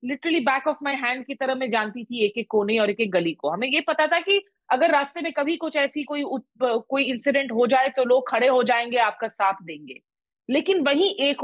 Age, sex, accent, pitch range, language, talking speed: 30-49, female, native, 215-280 Hz, Hindi, 240 wpm